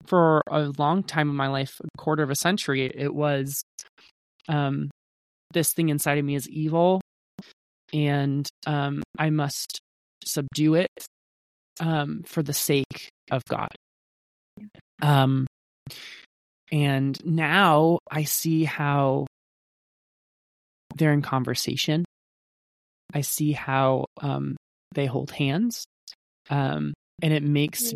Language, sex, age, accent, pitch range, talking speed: English, male, 20-39, American, 135-160 Hz, 115 wpm